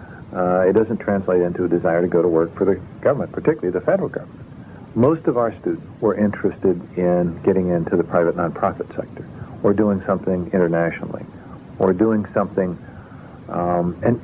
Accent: American